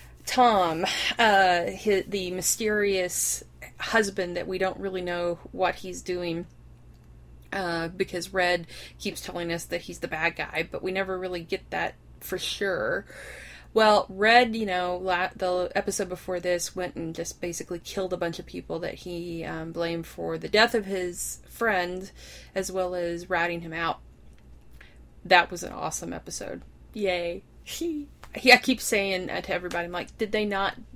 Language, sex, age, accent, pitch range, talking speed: English, female, 30-49, American, 165-195 Hz, 165 wpm